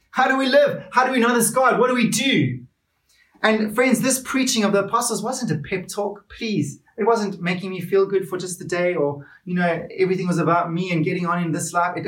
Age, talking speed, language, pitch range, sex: 30-49, 250 wpm, English, 180-230 Hz, male